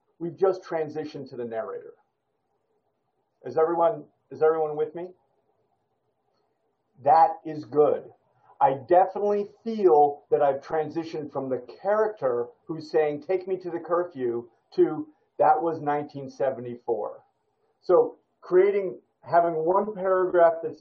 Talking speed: 120 wpm